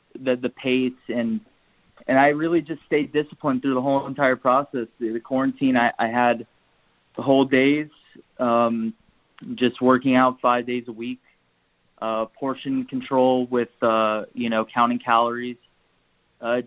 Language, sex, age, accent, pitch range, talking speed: English, male, 20-39, American, 115-135 Hz, 150 wpm